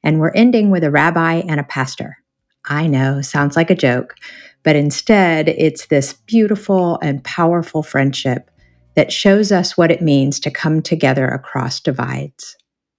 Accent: American